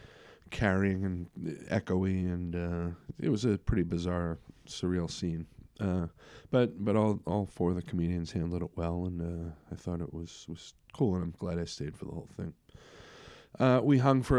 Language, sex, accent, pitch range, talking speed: English, male, American, 85-110 Hz, 190 wpm